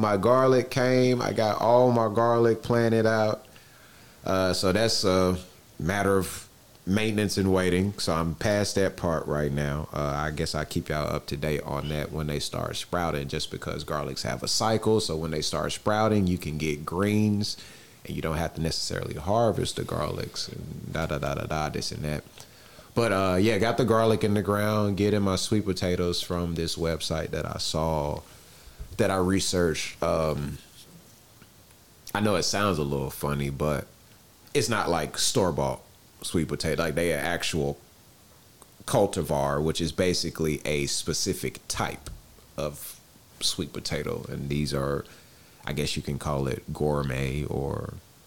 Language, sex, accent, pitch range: English, male, American, 75-105 Hz